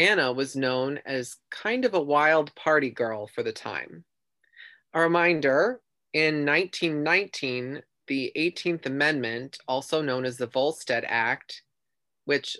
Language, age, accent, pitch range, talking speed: English, 20-39, American, 130-175 Hz, 130 wpm